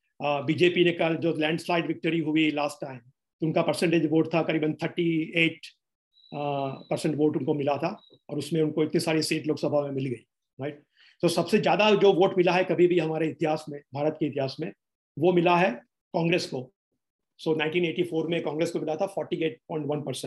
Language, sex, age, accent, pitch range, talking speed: Hindi, male, 50-69, native, 145-170 Hz, 180 wpm